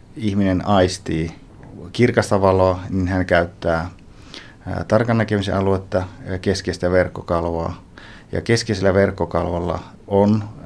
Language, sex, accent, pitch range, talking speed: Finnish, male, native, 90-105 Hz, 95 wpm